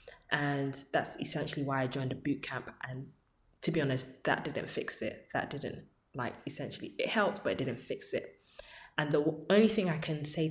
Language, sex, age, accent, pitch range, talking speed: English, female, 20-39, British, 140-170 Hz, 200 wpm